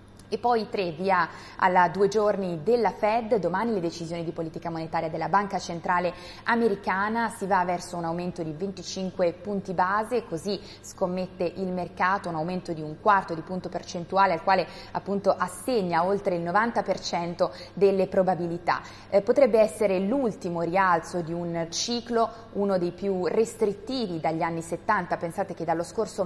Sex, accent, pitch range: female, native, 170-200 Hz